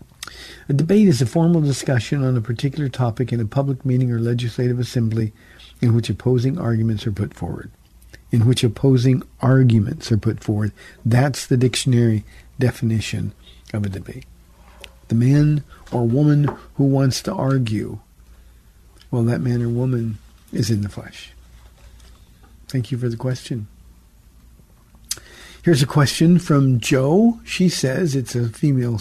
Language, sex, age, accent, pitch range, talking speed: English, male, 50-69, American, 115-155 Hz, 145 wpm